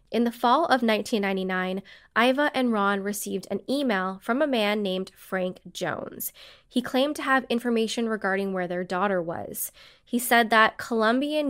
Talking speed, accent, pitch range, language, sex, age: 160 wpm, American, 200-255 Hz, English, female, 10-29